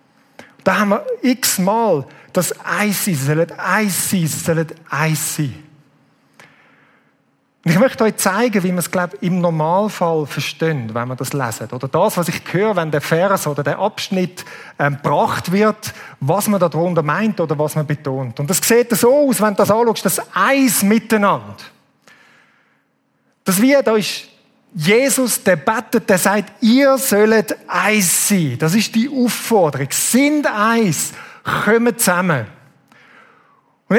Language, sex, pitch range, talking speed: German, male, 165-235 Hz, 140 wpm